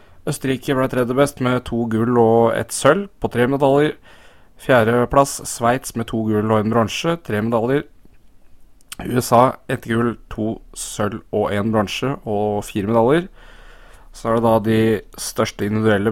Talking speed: 155 wpm